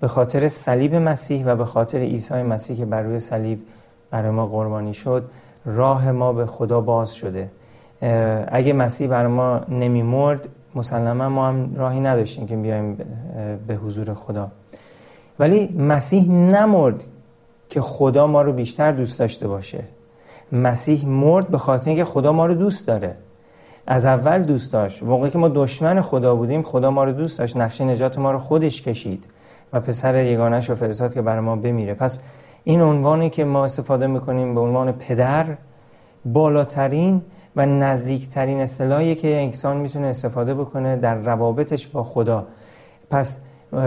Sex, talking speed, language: male, 155 wpm, Persian